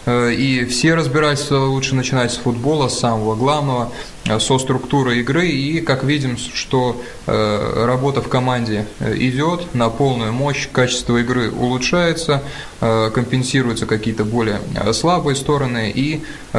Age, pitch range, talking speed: 20-39, 115-135 Hz, 120 wpm